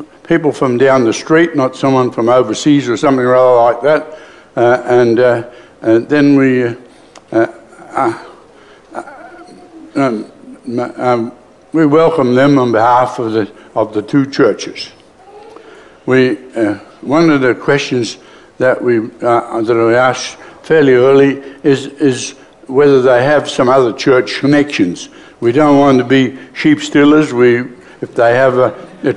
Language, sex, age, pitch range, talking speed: English, male, 60-79, 125-150 Hz, 150 wpm